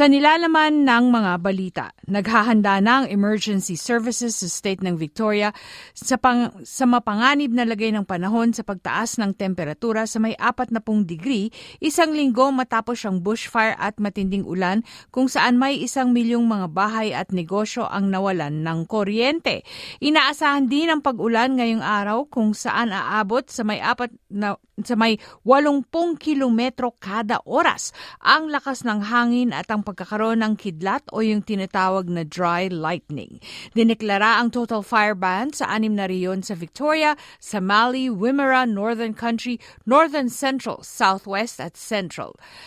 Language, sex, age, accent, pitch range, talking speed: Filipino, female, 50-69, native, 200-250 Hz, 140 wpm